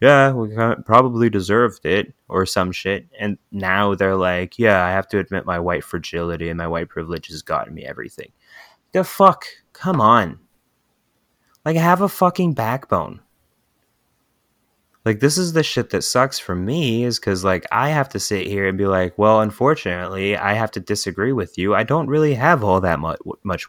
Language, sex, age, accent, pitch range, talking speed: English, male, 20-39, American, 90-110 Hz, 180 wpm